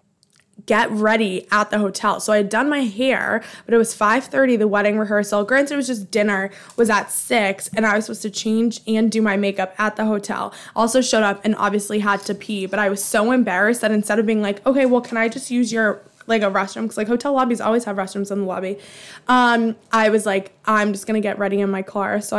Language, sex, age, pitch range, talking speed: English, female, 20-39, 200-235 Hz, 245 wpm